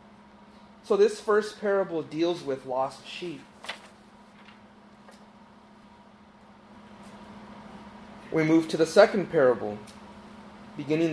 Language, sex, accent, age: English, male, American, 30-49